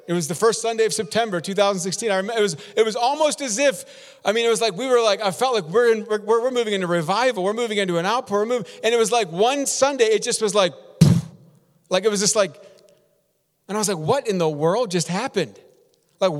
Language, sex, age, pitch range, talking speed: English, male, 40-59, 195-240 Hz, 240 wpm